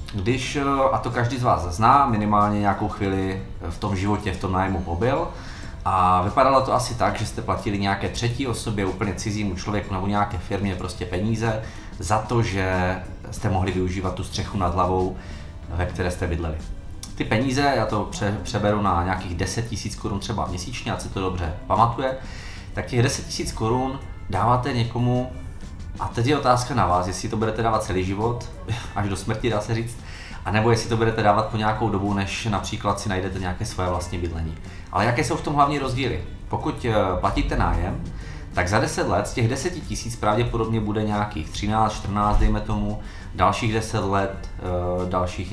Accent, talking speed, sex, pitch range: native, 185 wpm, male, 95-115 Hz